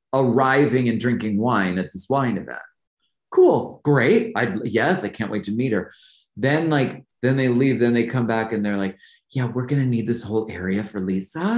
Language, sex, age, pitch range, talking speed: English, male, 30-49, 110-180 Hz, 200 wpm